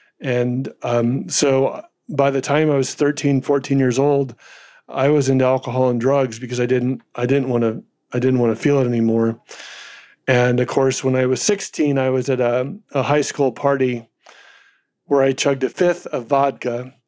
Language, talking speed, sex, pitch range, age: English, 175 wpm, male, 125-145 Hz, 40-59